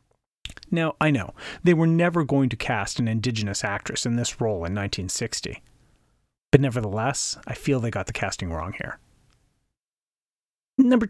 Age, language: 40-59, English